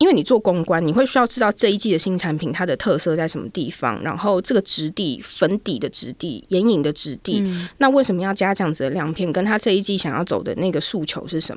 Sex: female